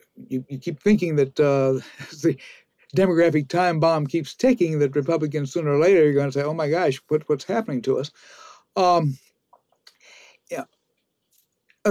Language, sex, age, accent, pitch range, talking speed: English, male, 60-79, American, 145-175 Hz, 155 wpm